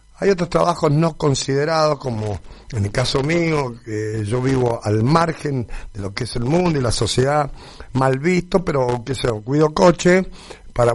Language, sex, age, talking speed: Spanish, male, 50-69, 180 wpm